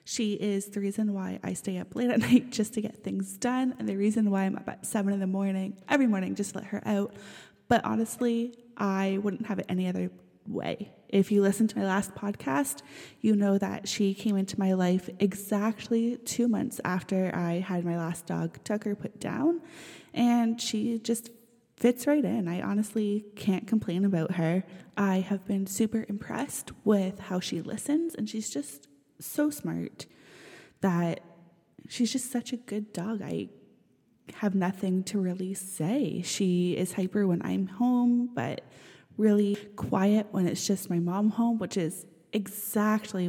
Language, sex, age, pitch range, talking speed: English, female, 20-39, 185-225 Hz, 175 wpm